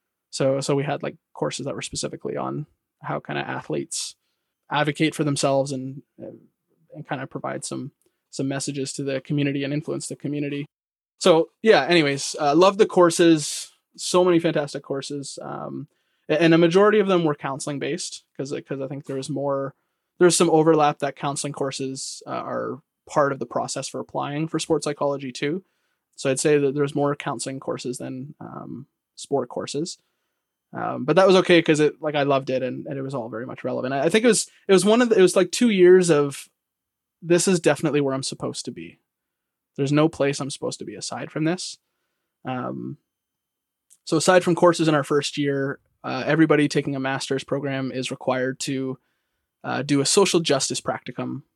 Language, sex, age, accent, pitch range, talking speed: English, male, 20-39, American, 135-160 Hz, 195 wpm